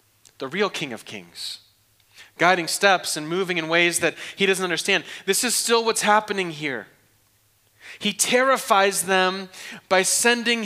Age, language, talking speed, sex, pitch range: 30-49, English, 145 wpm, male, 105-170 Hz